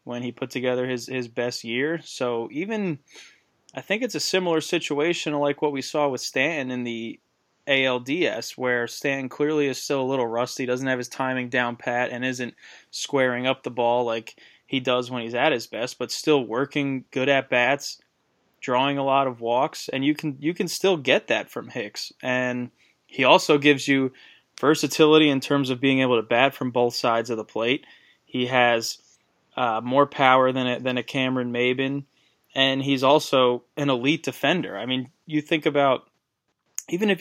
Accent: American